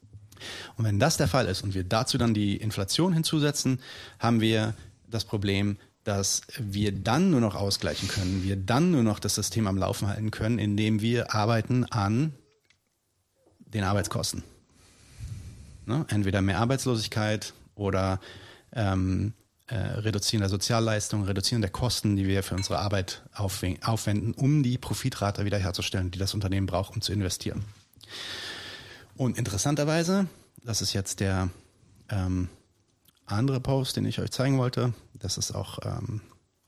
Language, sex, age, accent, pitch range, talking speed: German, male, 30-49, German, 100-115 Hz, 140 wpm